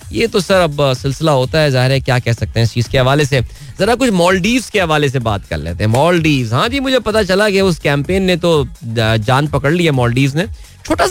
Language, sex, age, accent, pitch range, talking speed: Hindi, male, 20-39, native, 125-165 Hz, 250 wpm